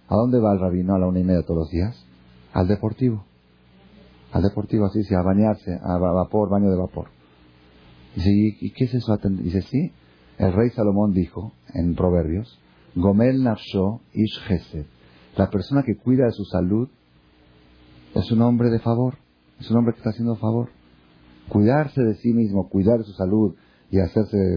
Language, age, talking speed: Spanish, 40-59, 180 wpm